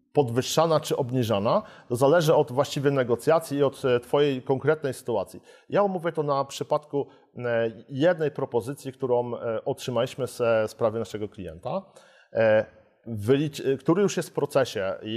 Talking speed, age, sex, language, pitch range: 125 wpm, 40-59, male, Polish, 115-145 Hz